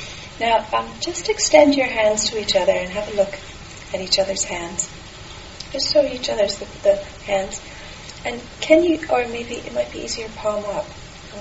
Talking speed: 190 wpm